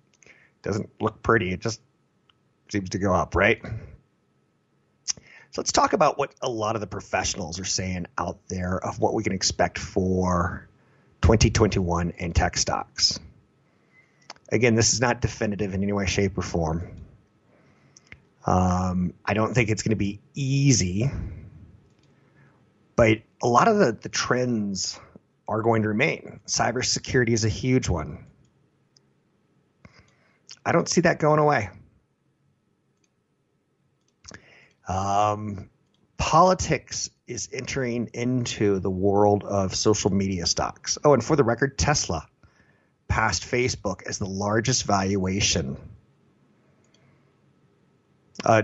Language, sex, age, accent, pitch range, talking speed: English, male, 30-49, American, 95-115 Hz, 120 wpm